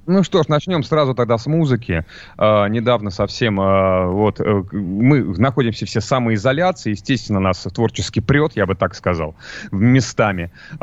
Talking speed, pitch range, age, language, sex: 145 wpm, 100-130 Hz, 30-49, Russian, male